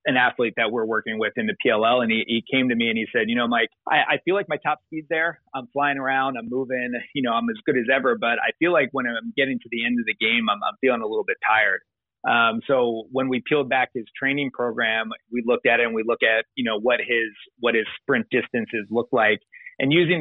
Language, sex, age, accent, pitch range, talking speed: English, male, 30-49, American, 115-140 Hz, 265 wpm